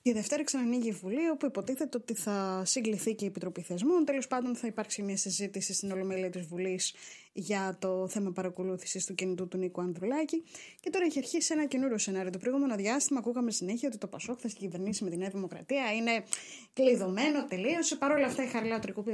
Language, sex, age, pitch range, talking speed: Greek, female, 20-39, 195-265 Hz, 195 wpm